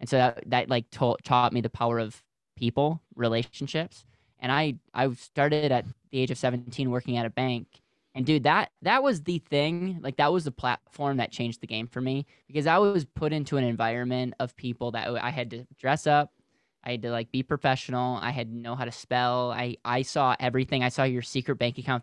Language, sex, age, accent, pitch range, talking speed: English, male, 20-39, American, 120-150 Hz, 225 wpm